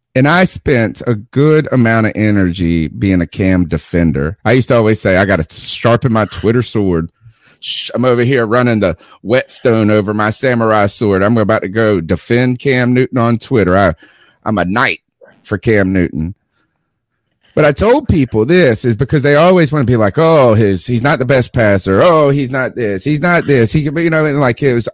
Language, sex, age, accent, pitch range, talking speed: English, male, 30-49, American, 110-170 Hz, 205 wpm